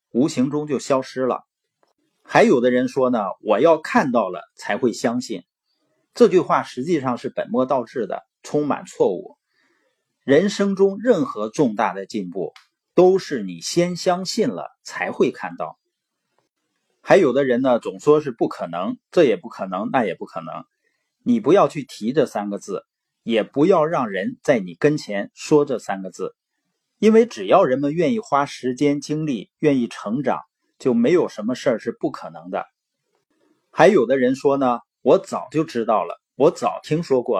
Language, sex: Chinese, male